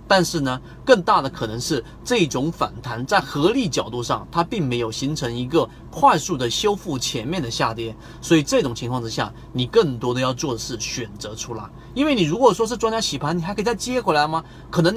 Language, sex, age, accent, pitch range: Chinese, male, 30-49, native, 115-165 Hz